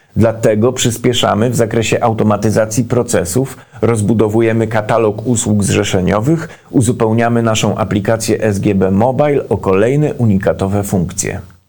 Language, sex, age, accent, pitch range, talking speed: Polish, male, 40-59, native, 100-125 Hz, 100 wpm